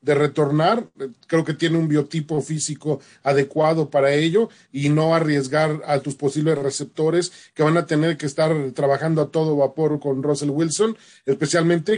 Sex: male